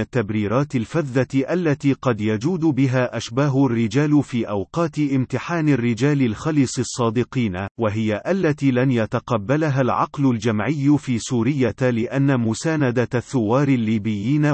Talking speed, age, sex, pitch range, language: 105 wpm, 40-59, male, 120-145 Hz, Arabic